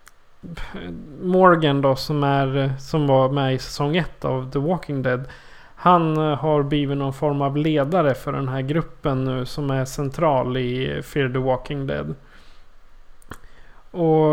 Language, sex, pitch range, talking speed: Swedish, male, 135-155 Hz, 145 wpm